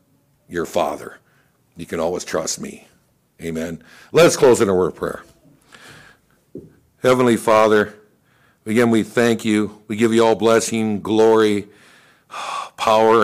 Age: 60-79